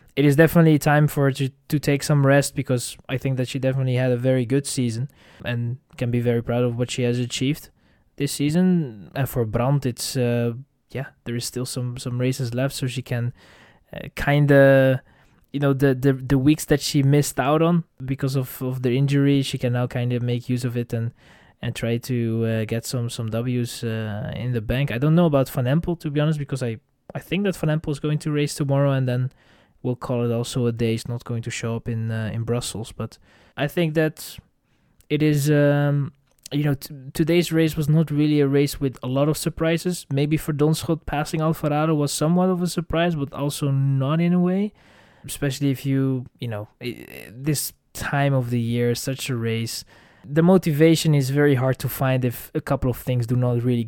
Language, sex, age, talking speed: English, male, 20-39, 220 wpm